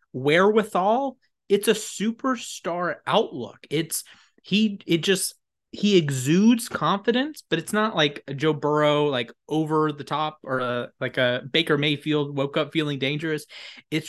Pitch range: 125-155 Hz